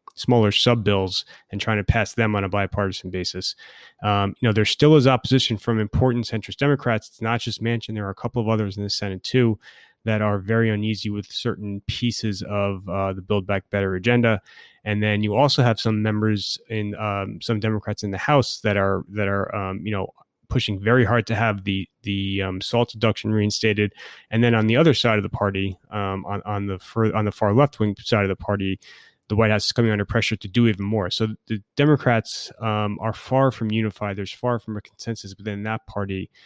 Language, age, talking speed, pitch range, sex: English, 30-49, 215 wpm, 100-115 Hz, male